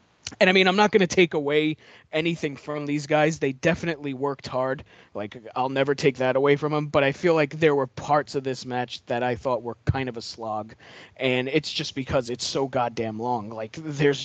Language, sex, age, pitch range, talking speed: English, male, 20-39, 130-165 Hz, 225 wpm